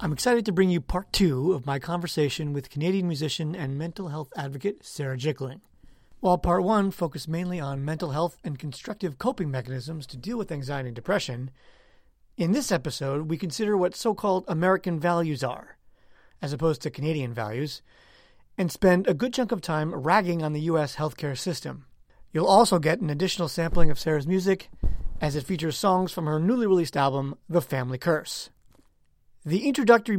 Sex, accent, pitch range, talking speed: male, American, 145-185 Hz, 175 wpm